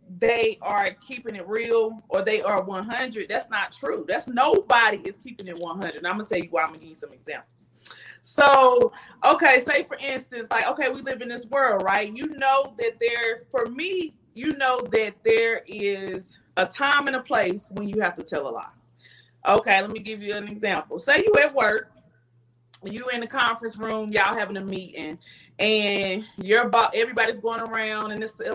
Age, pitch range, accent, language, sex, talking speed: 30-49, 195-270 Hz, American, English, female, 200 wpm